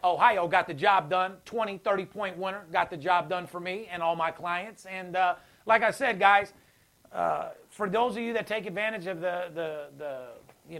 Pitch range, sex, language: 175-210 Hz, male, English